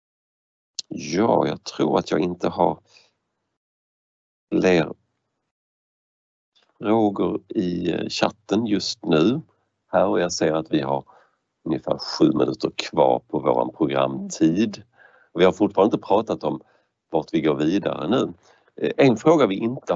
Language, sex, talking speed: Swedish, male, 125 wpm